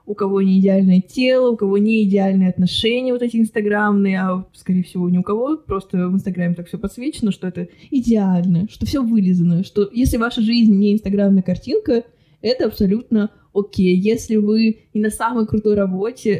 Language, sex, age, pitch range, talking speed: Russian, female, 20-39, 195-230 Hz, 175 wpm